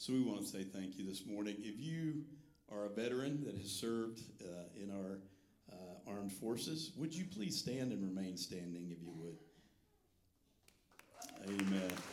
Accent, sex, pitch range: American, male, 85-110 Hz